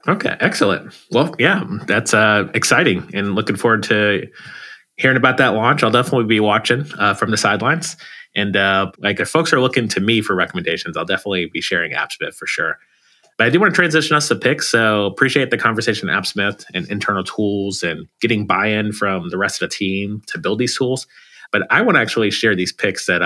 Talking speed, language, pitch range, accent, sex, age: 210 wpm, English, 100-125 Hz, American, male, 30-49